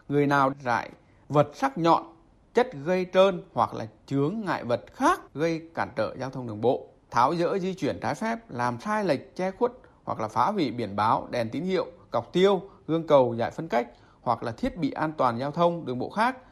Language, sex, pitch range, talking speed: Vietnamese, male, 115-155 Hz, 220 wpm